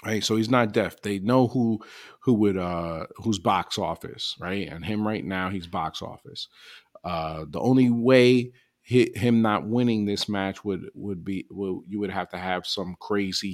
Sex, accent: male, American